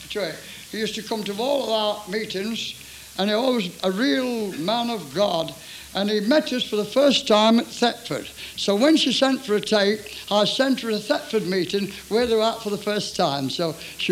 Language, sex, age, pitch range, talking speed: English, male, 60-79, 205-270 Hz, 215 wpm